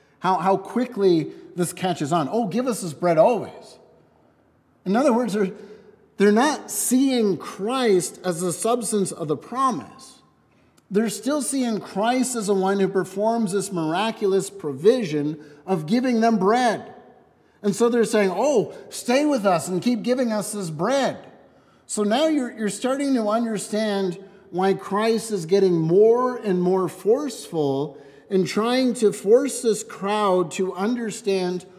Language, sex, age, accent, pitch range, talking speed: English, male, 50-69, American, 170-220 Hz, 150 wpm